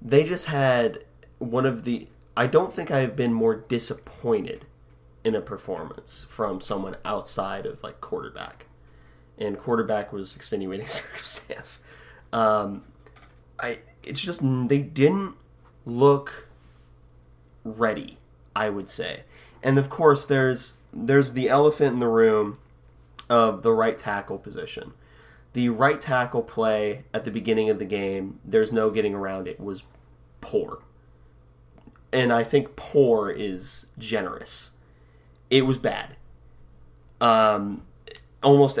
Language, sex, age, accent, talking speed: English, male, 20-39, American, 125 wpm